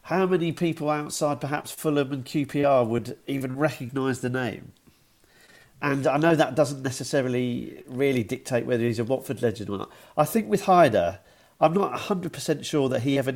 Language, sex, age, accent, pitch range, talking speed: English, male, 40-59, British, 120-155 Hz, 180 wpm